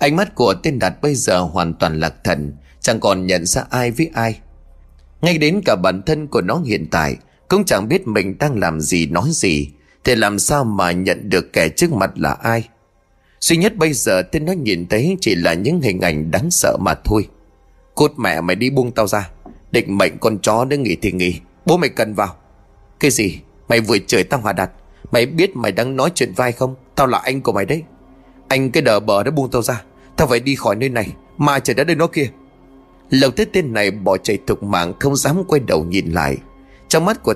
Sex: male